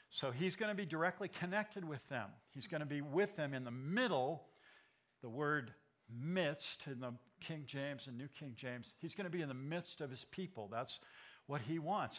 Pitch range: 135-175 Hz